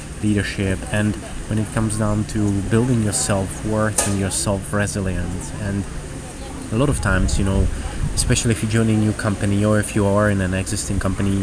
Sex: male